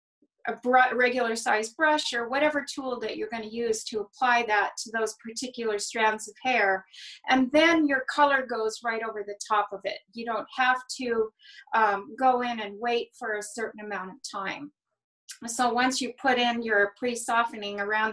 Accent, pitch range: American, 225-260 Hz